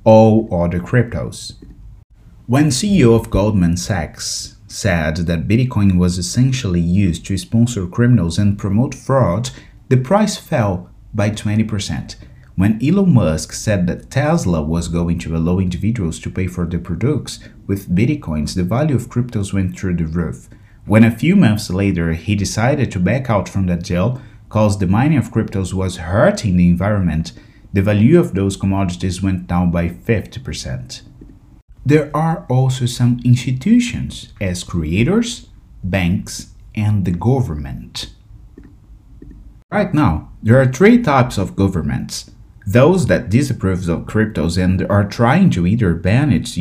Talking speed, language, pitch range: 145 wpm, English, 90-120 Hz